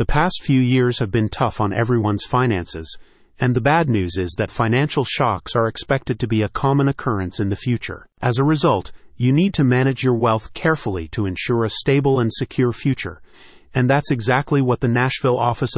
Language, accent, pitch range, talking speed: English, American, 110-135 Hz, 200 wpm